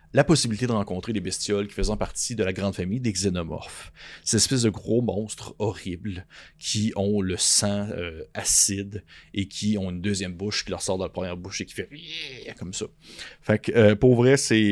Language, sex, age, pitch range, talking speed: French, male, 30-49, 95-125 Hz, 210 wpm